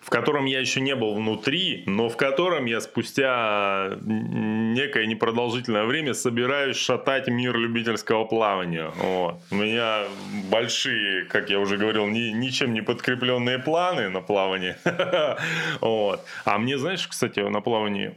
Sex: male